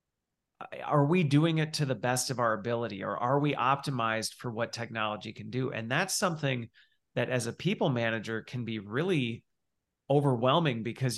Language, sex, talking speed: English, male, 170 wpm